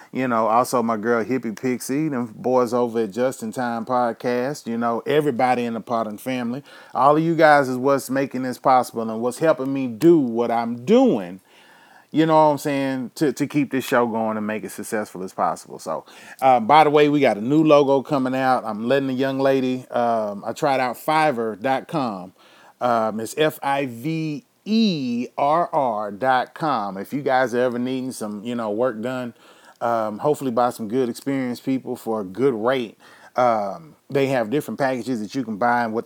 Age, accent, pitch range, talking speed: 30-49, American, 115-135 Hz, 190 wpm